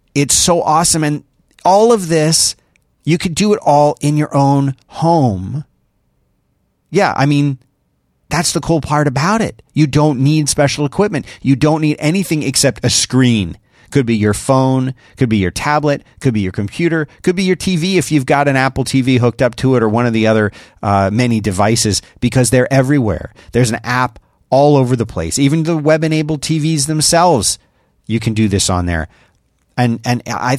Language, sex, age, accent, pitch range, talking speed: English, male, 40-59, American, 110-150 Hz, 185 wpm